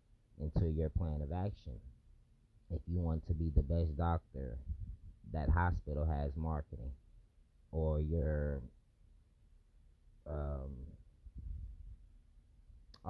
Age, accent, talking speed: 30-49, American, 90 wpm